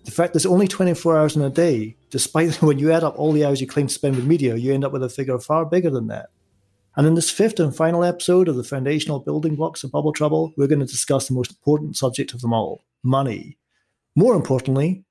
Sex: male